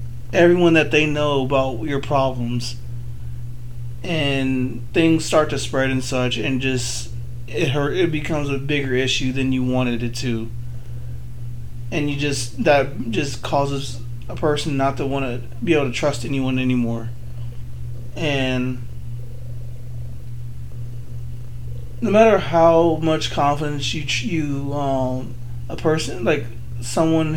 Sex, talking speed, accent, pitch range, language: male, 130 wpm, American, 120-145 Hz, English